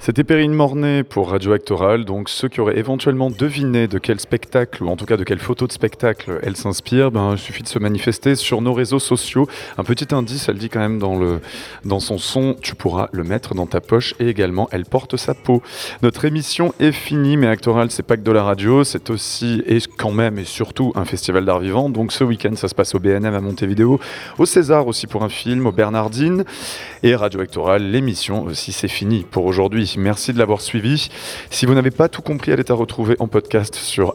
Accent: French